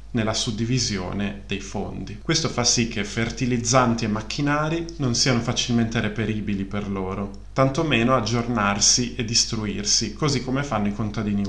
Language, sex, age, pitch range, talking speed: Italian, male, 30-49, 105-125 Hz, 135 wpm